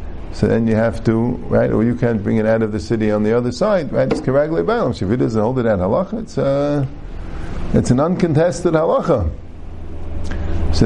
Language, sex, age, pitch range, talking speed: English, male, 50-69, 90-135 Hz, 200 wpm